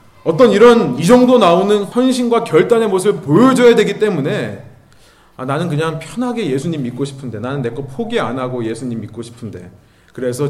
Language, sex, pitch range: Korean, male, 130-220 Hz